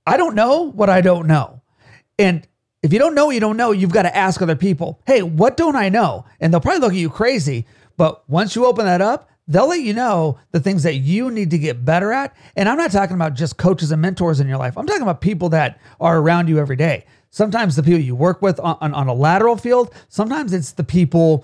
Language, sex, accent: English, male, American